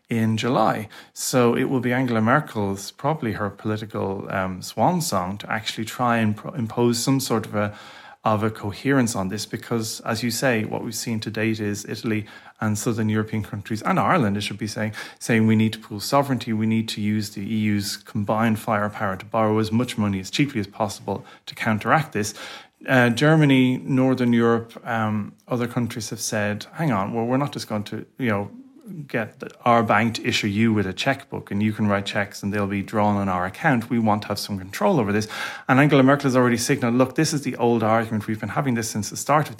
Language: English